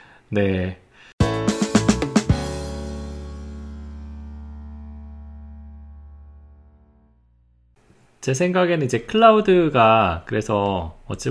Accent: native